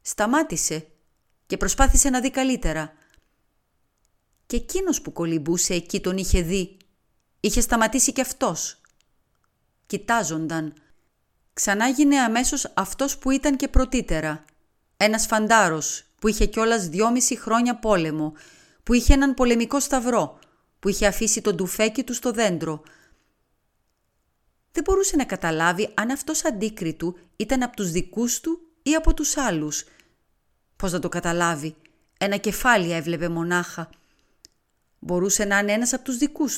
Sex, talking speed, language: female, 130 wpm, Greek